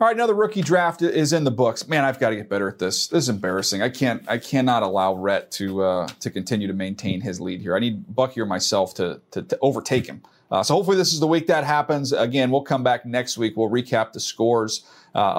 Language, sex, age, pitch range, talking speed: English, male, 40-59, 110-165 Hz, 255 wpm